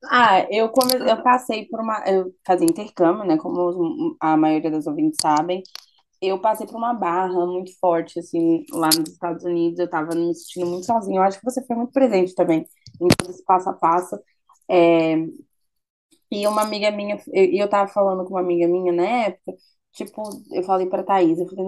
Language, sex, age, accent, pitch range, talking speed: Portuguese, female, 20-39, Brazilian, 175-235 Hz, 200 wpm